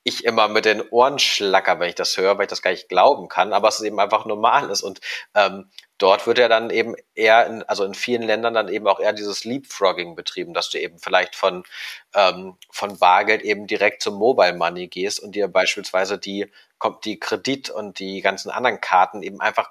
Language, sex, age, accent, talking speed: German, male, 30-49, German, 220 wpm